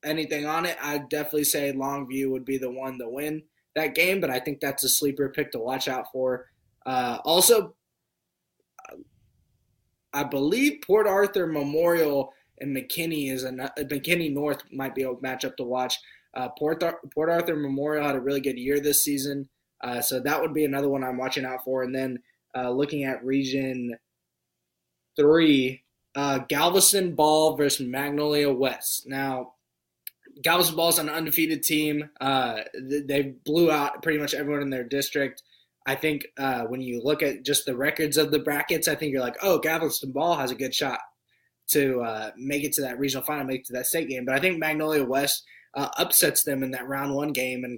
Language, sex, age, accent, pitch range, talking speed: English, male, 20-39, American, 130-150 Hz, 190 wpm